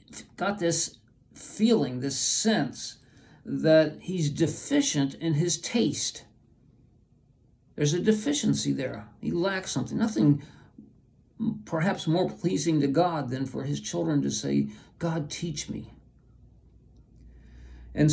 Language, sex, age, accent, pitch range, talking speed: English, male, 60-79, American, 125-170 Hz, 115 wpm